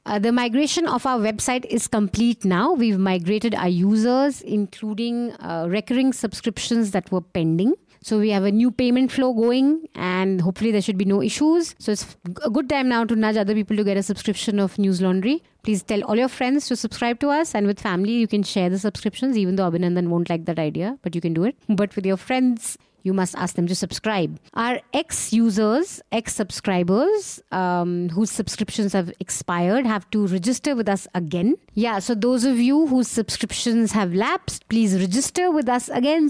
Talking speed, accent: 195 wpm, Indian